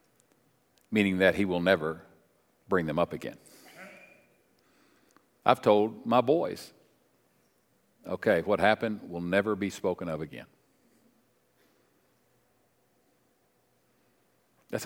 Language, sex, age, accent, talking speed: English, male, 50-69, American, 95 wpm